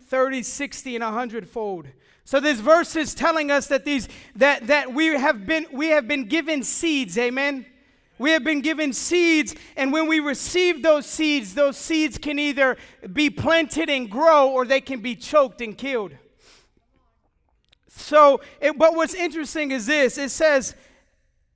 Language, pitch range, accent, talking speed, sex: English, 275-320 Hz, American, 160 wpm, male